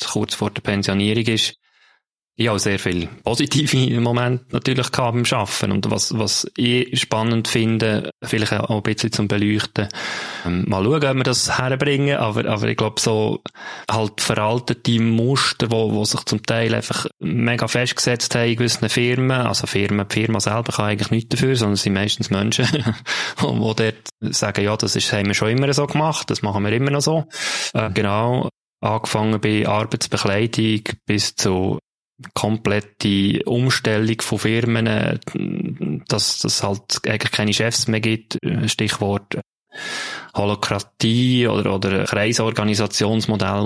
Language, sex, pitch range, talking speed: German, male, 105-125 Hz, 150 wpm